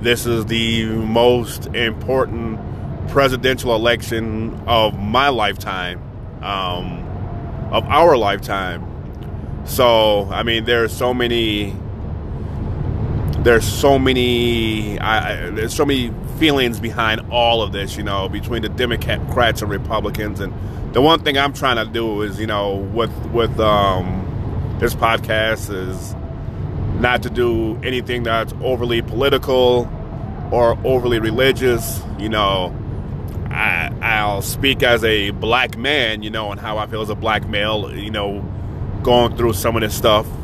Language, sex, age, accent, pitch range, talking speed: English, male, 30-49, American, 105-125 Hz, 135 wpm